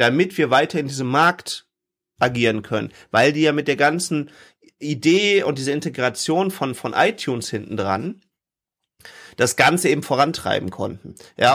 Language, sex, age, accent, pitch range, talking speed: German, male, 40-59, German, 130-165 Hz, 150 wpm